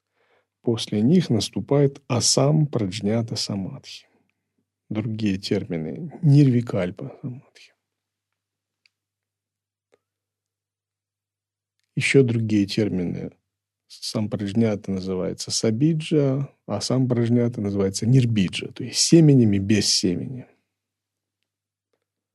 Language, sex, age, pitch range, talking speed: Russian, male, 40-59, 100-120 Hz, 70 wpm